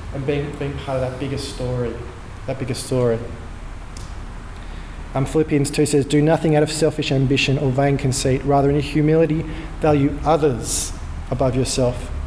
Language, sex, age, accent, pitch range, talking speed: English, male, 20-39, Australian, 125-150 Hz, 150 wpm